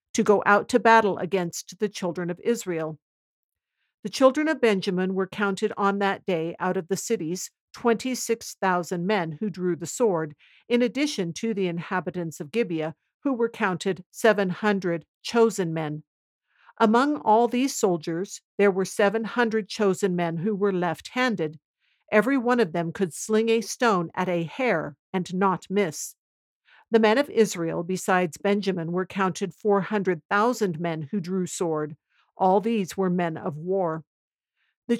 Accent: American